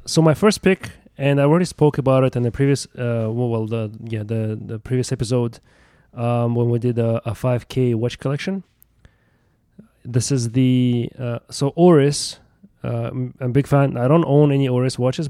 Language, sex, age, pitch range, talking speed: English, male, 20-39, 115-135 Hz, 190 wpm